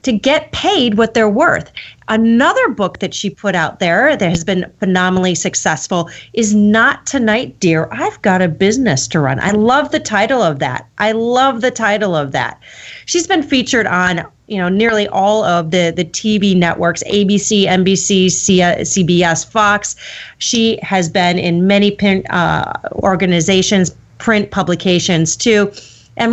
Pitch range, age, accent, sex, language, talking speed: 175-220 Hz, 30-49, American, female, English, 150 wpm